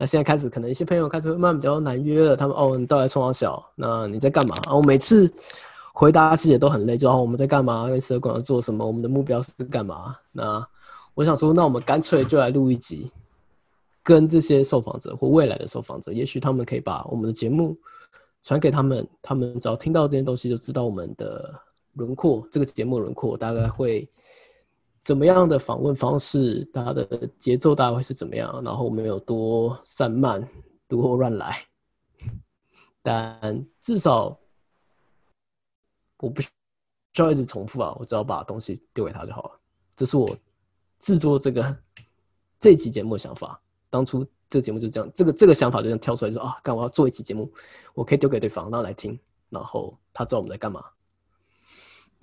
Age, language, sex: 20-39, Chinese, male